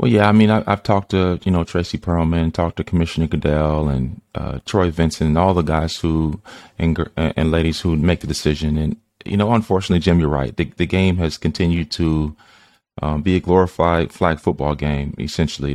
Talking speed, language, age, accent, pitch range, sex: 200 wpm, English, 30-49, American, 75-85 Hz, male